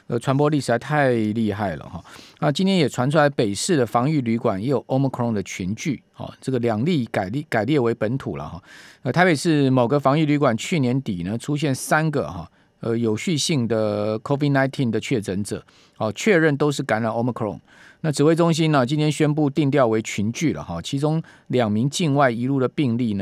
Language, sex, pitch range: Chinese, male, 115-150 Hz